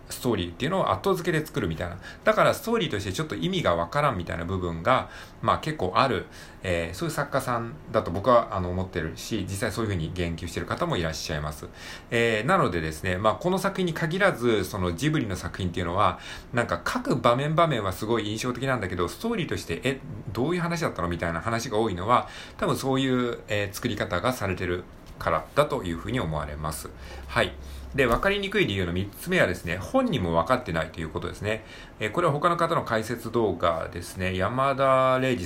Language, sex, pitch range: Japanese, male, 85-135 Hz